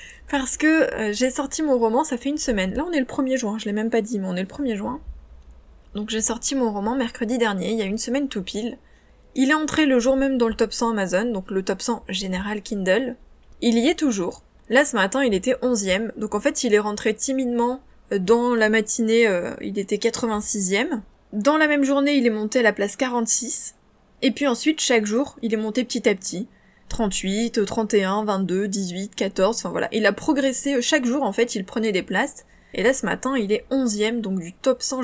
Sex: female